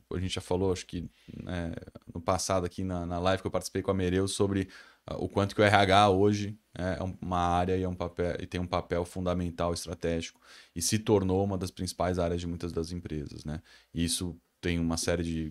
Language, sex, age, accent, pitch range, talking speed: Portuguese, male, 20-39, Brazilian, 85-100 Hz, 220 wpm